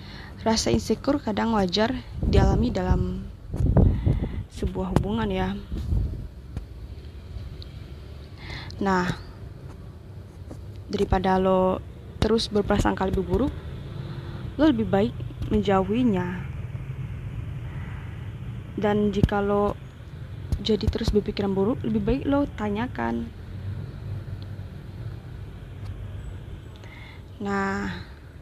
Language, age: Indonesian, 20-39